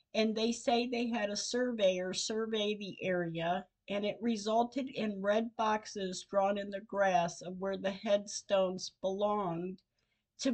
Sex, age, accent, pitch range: female, 50-69, American, 180-230 Hz